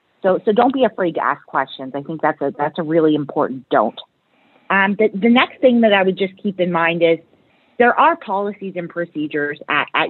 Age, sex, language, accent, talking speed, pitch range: 40-59, female, English, American, 220 wpm, 155-185 Hz